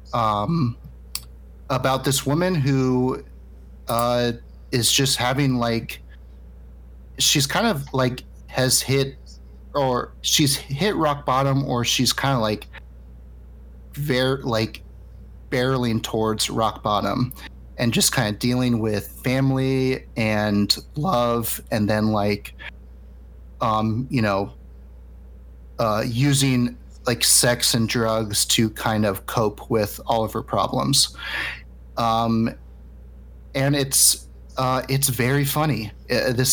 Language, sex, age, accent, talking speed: English, male, 30-49, American, 115 wpm